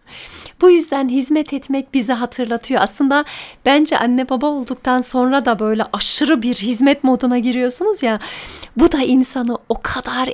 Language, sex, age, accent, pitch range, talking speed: Turkish, female, 40-59, native, 230-295 Hz, 145 wpm